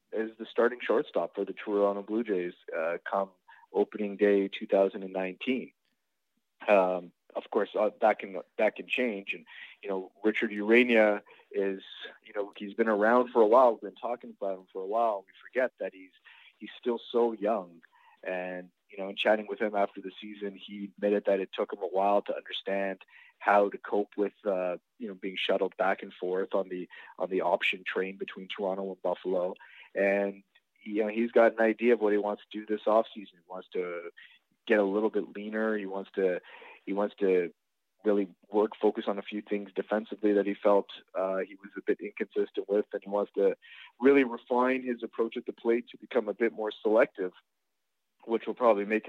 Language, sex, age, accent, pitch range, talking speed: English, male, 30-49, American, 100-115 Hz, 200 wpm